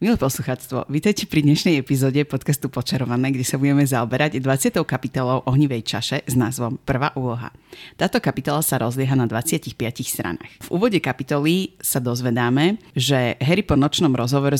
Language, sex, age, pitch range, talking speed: Slovak, female, 30-49, 125-145 Hz, 150 wpm